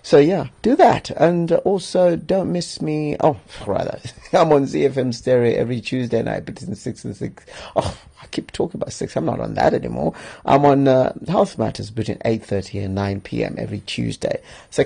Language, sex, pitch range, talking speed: English, male, 110-155 Hz, 185 wpm